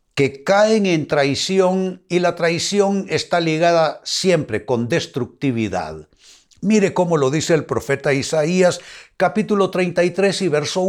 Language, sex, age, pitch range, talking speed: Spanish, male, 60-79, 130-190 Hz, 125 wpm